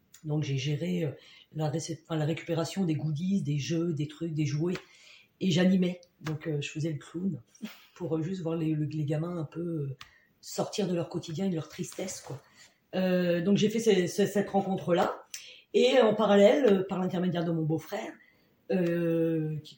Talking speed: 180 wpm